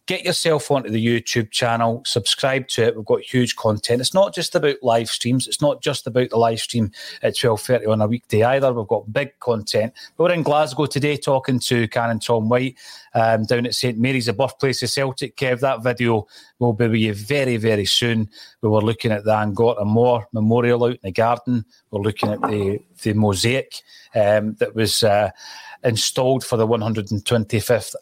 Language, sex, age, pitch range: English, male, 30-49, 110-130 Hz